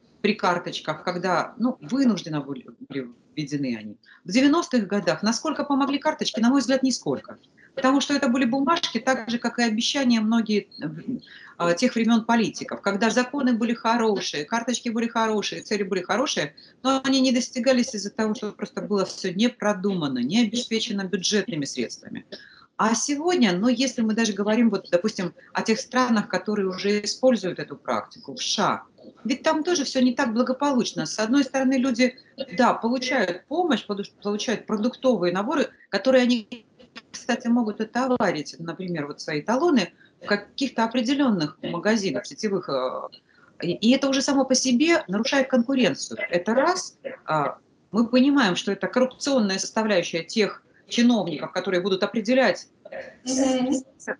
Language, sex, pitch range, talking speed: Russian, female, 195-260 Hz, 145 wpm